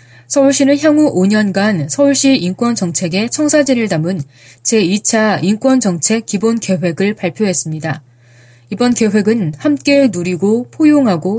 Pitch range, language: 175-245 Hz, Korean